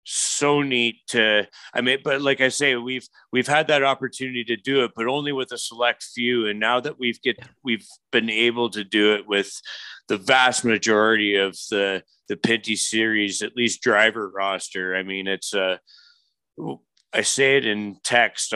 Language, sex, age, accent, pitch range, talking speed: English, male, 30-49, American, 100-120 Hz, 180 wpm